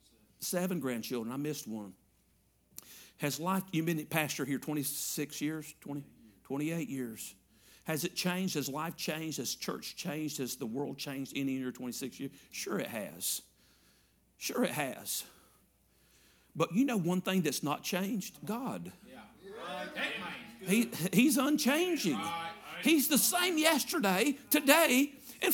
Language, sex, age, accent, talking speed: English, male, 50-69, American, 140 wpm